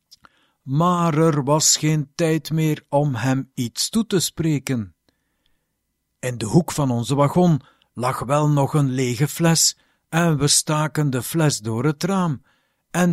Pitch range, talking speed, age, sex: 130-175 Hz, 150 wpm, 60-79, male